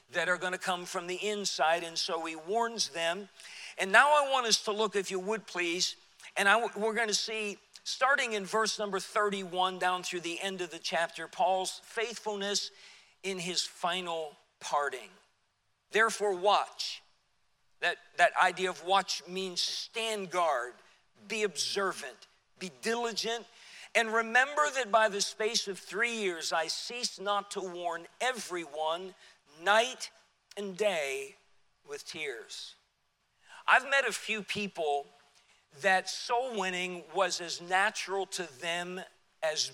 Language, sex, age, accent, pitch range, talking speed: English, male, 50-69, American, 170-215 Hz, 140 wpm